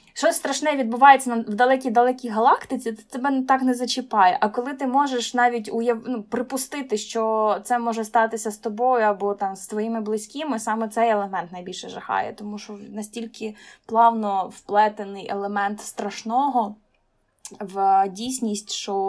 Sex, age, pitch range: female, 20-39, 215-255 Hz